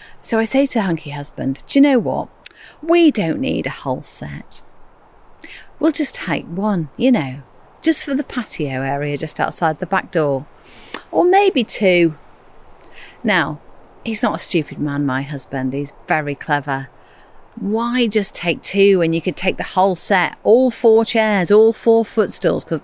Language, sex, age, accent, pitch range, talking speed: English, female, 40-59, British, 165-245 Hz, 170 wpm